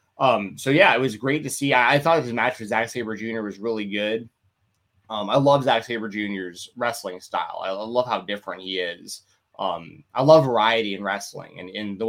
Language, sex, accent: English, male, American